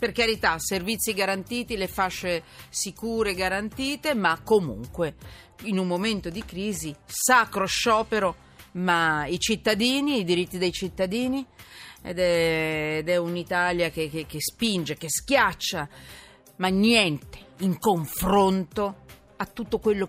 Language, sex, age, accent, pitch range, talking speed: Italian, female, 40-59, native, 175-230 Hz, 125 wpm